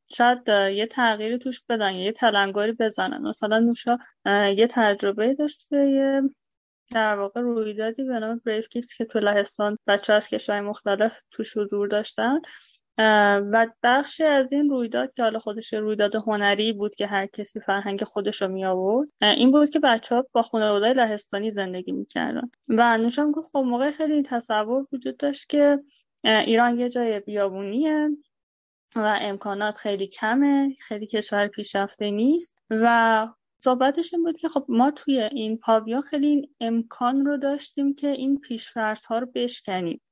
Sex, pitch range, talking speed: female, 210-255 Hz, 145 wpm